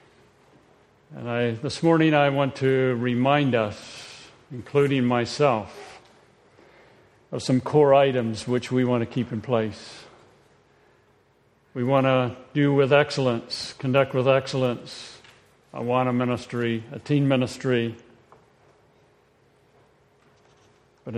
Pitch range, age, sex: 125-145 Hz, 50-69, male